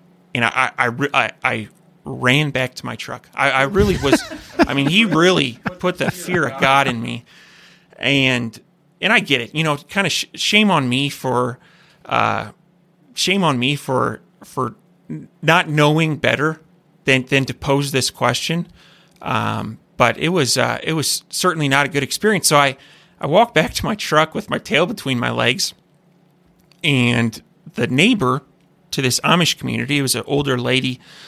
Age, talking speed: 30-49, 175 wpm